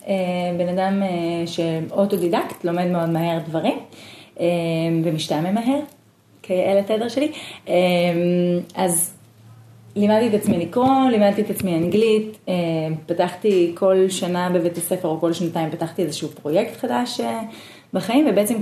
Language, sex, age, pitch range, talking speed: Hebrew, female, 30-49, 170-205 Hz, 115 wpm